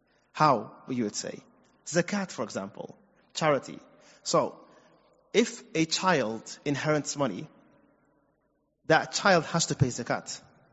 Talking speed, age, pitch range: 110 wpm, 30-49, 140-175 Hz